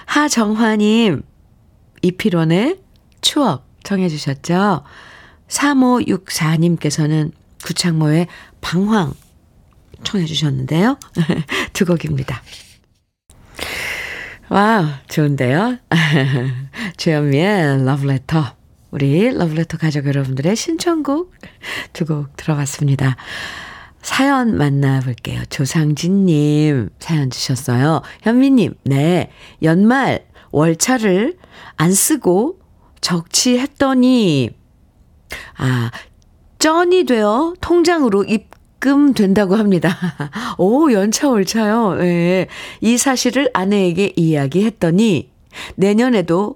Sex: female